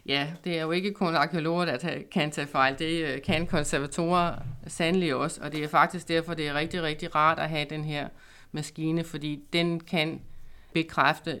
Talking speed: 185 wpm